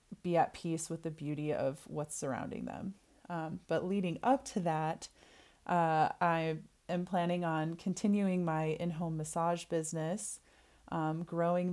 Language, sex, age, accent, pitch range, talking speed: English, female, 20-39, American, 155-175 Hz, 145 wpm